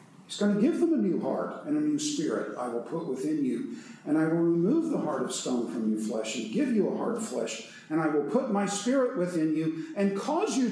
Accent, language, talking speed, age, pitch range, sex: American, English, 260 wpm, 50-69, 140-230 Hz, male